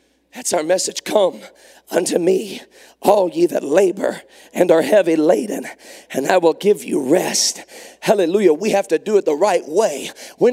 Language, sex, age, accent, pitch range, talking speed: English, male, 40-59, American, 220-305 Hz, 170 wpm